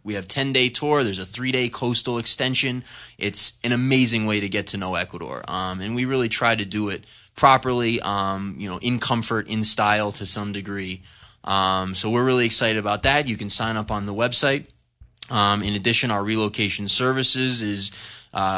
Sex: male